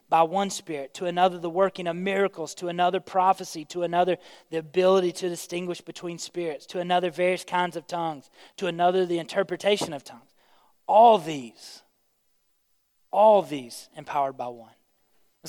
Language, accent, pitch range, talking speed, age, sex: English, American, 175-200 Hz, 150 wpm, 30-49, male